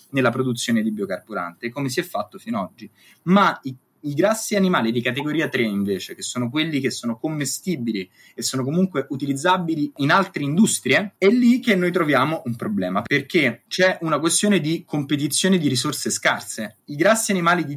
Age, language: 20-39, Italian